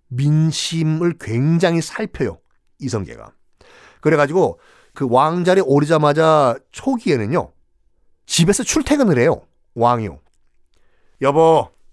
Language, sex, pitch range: Korean, male, 145-195 Hz